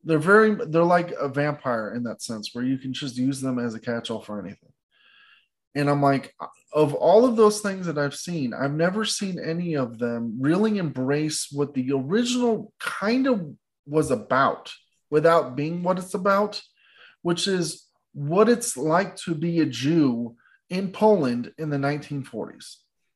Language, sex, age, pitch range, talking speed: English, male, 20-39, 140-205 Hz, 170 wpm